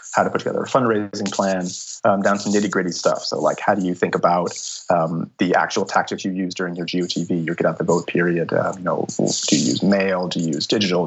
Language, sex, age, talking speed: English, male, 30-49, 230 wpm